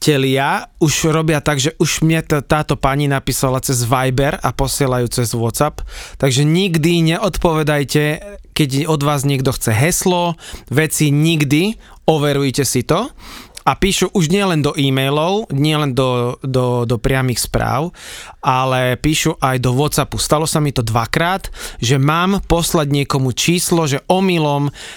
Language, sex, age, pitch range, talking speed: Slovak, male, 30-49, 135-160 Hz, 145 wpm